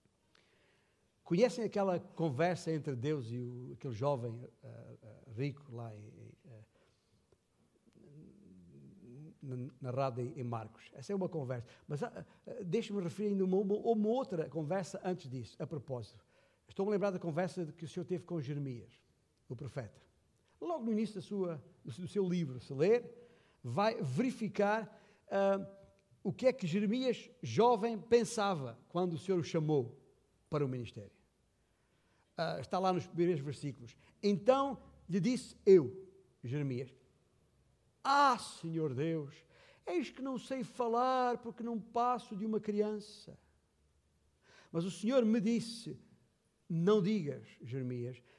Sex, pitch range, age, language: male, 135-210 Hz, 60-79, Portuguese